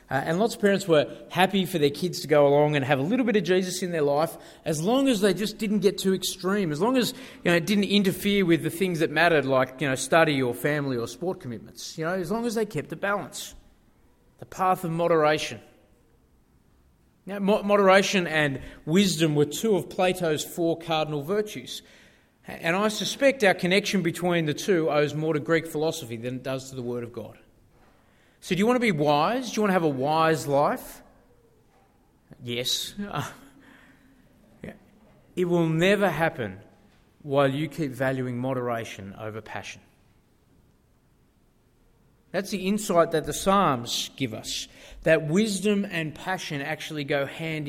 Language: English